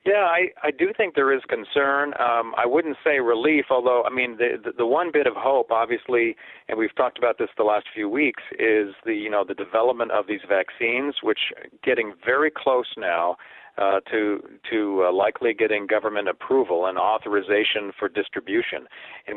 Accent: American